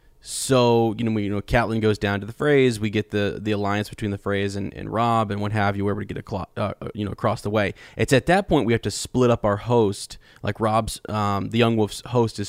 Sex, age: male, 20-39